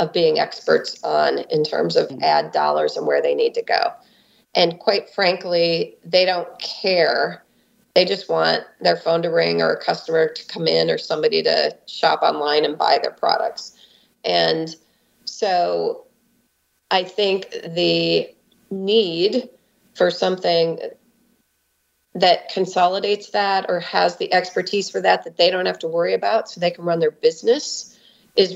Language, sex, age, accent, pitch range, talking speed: English, female, 30-49, American, 165-250 Hz, 155 wpm